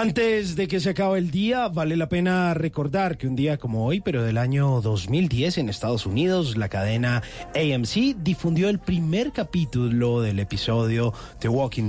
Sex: male